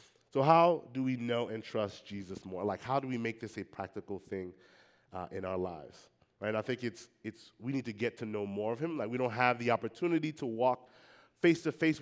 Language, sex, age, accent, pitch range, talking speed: English, male, 30-49, American, 105-130 Hz, 225 wpm